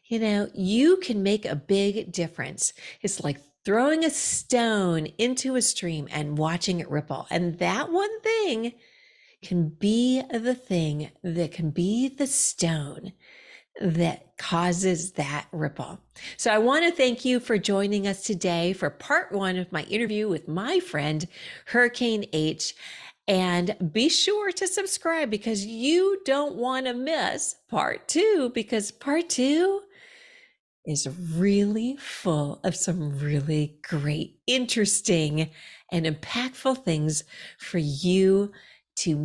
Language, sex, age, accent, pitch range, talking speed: English, female, 40-59, American, 165-250 Hz, 135 wpm